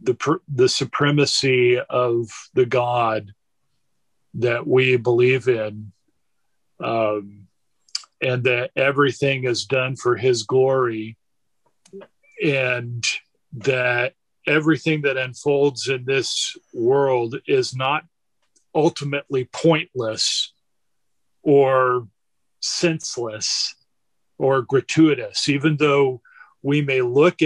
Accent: American